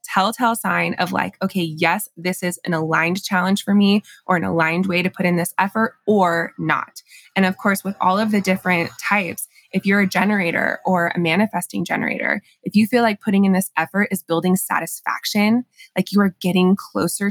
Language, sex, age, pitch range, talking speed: English, female, 20-39, 175-200 Hz, 200 wpm